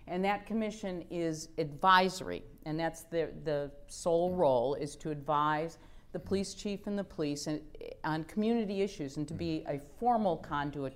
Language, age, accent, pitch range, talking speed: English, 50-69, American, 140-175 Hz, 160 wpm